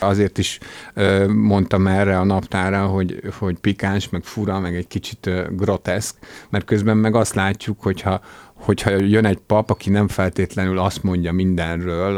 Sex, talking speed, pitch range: male, 155 wpm, 90-105 Hz